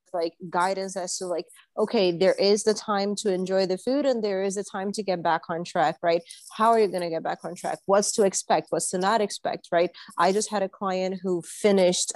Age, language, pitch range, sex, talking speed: 30-49, English, 175-205 Hz, female, 240 wpm